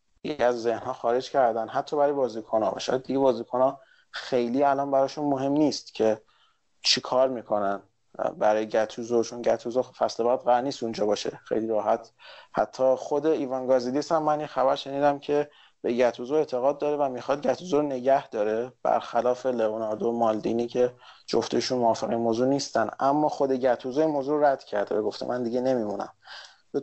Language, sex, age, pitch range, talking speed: Persian, male, 30-49, 115-140 Hz, 155 wpm